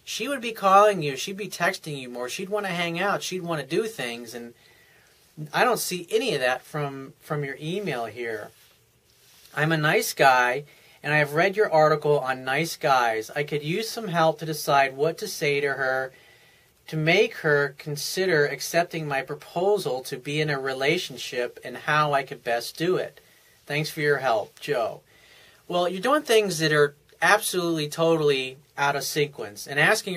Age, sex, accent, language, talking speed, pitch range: 40-59, male, American, English, 185 wpm, 140-185 Hz